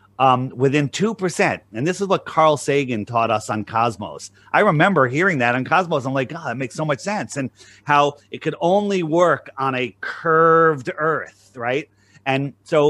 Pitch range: 120-160 Hz